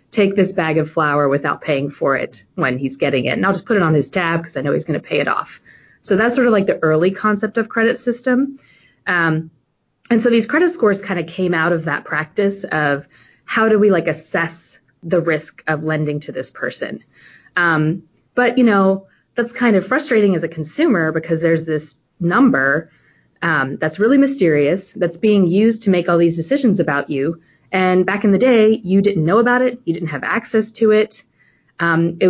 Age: 30-49